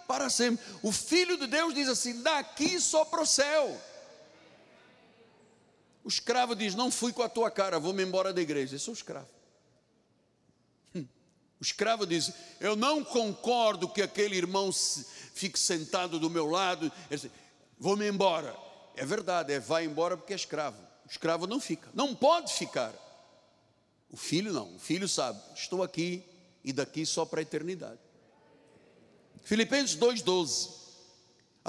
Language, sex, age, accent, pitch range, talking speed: Portuguese, male, 60-79, Brazilian, 175-250 Hz, 150 wpm